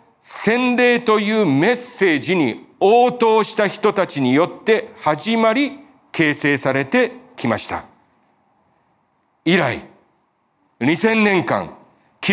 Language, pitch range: Japanese, 150-235 Hz